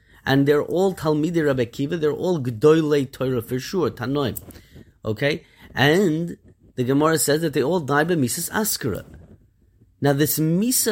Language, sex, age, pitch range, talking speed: English, male, 30-49, 120-175 Hz, 155 wpm